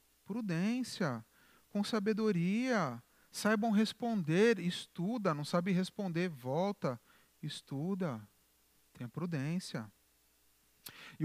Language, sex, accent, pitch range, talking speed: Portuguese, male, Brazilian, 150-210 Hz, 75 wpm